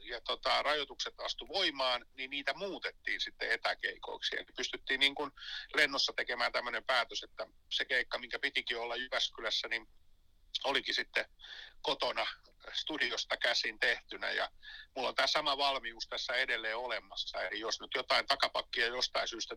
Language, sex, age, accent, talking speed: Finnish, male, 60-79, native, 145 wpm